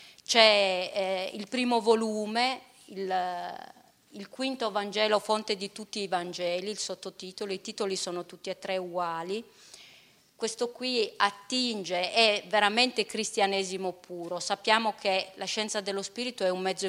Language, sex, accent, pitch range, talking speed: Italian, female, native, 190-230 Hz, 135 wpm